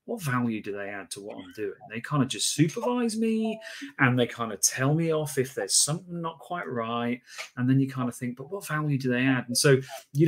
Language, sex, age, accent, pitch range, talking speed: English, male, 30-49, British, 115-155 Hz, 250 wpm